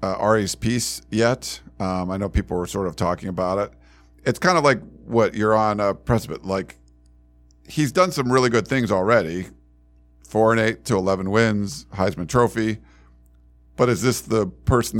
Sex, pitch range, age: male, 90-115 Hz, 50-69